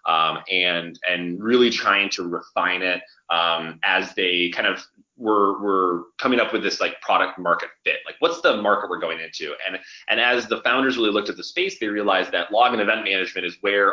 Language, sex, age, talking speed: English, male, 30-49, 210 wpm